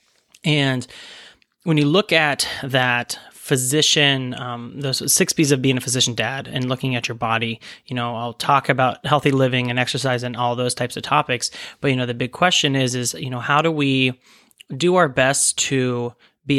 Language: English